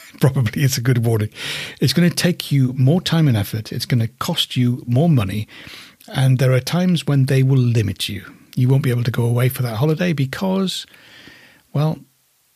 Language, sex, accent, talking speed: English, male, British, 200 wpm